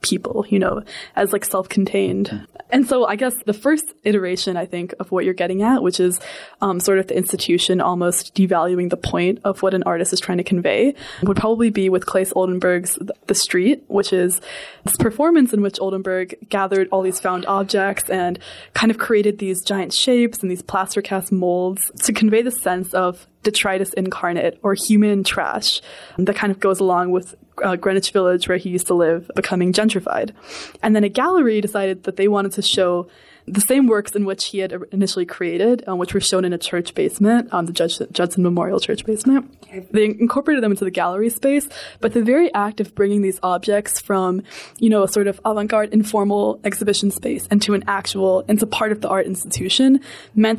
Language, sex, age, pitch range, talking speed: English, female, 20-39, 185-220 Hz, 195 wpm